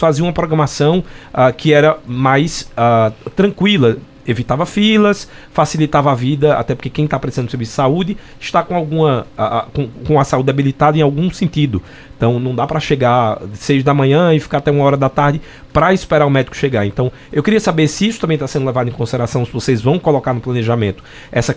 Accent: Brazilian